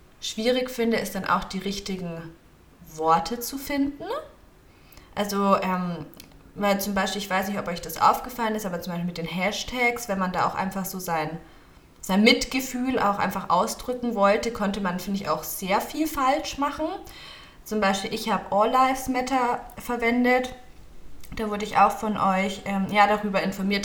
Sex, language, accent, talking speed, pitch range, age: female, German, German, 170 wpm, 180-220 Hz, 20-39